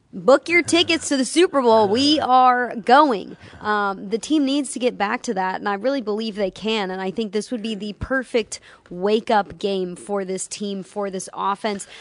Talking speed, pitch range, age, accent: 205 wpm, 190-220 Hz, 20-39, American